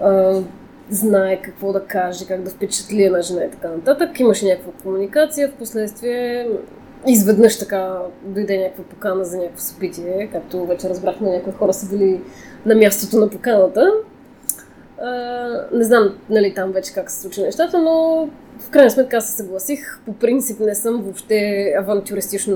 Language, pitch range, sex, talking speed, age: Bulgarian, 195-255 Hz, female, 155 wpm, 20-39